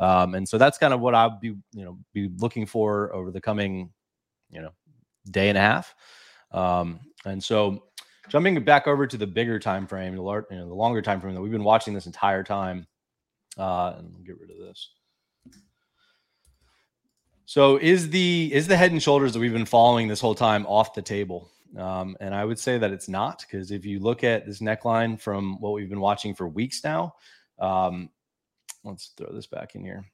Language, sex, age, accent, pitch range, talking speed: English, male, 30-49, American, 95-115 Hz, 205 wpm